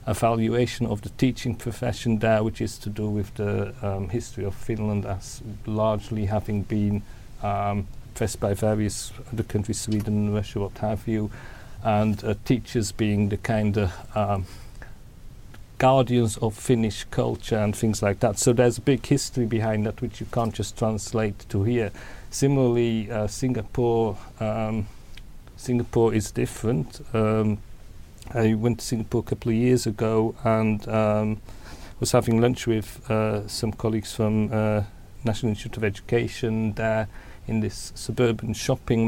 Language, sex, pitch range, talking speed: English, male, 105-120 Hz, 145 wpm